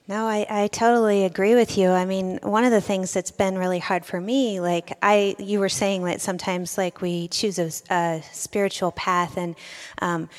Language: English